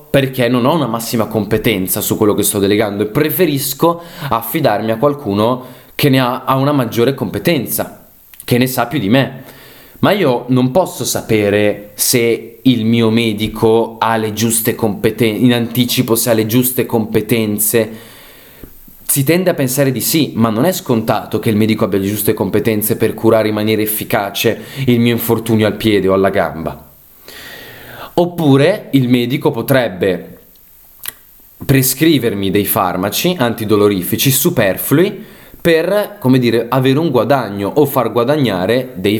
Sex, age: male, 20-39